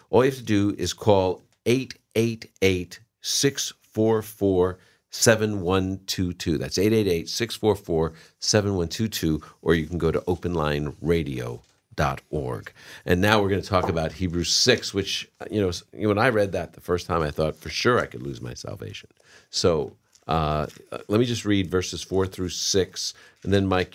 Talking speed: 145 wpm